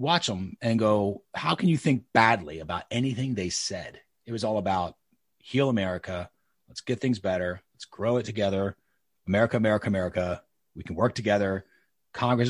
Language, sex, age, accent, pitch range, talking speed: English, male, 30-49, American, 95-120 Hz, 170 wpm